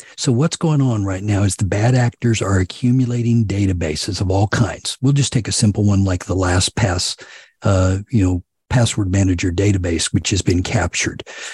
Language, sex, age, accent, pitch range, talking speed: English, male, 50-69, American, 100-125 Hz, 185 wpm